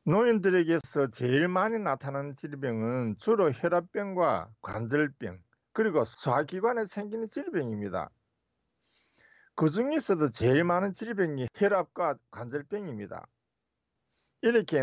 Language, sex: Korean, male